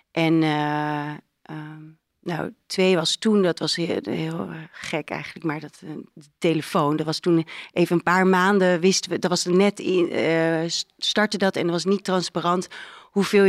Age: 40-59